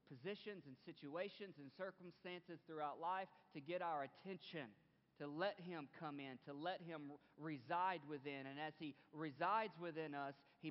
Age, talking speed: 40-59, 155 wpm